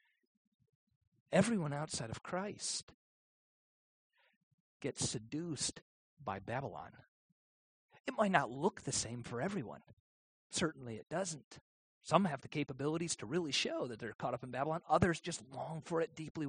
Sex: male